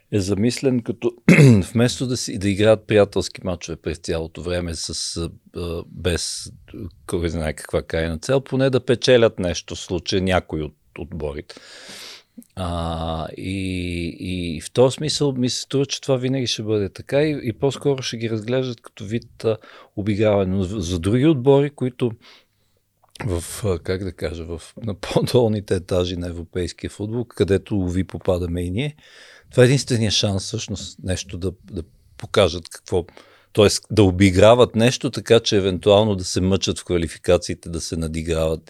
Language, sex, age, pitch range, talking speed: Bulgarian, male, 50-69, 85-120 Hz, 150 wpm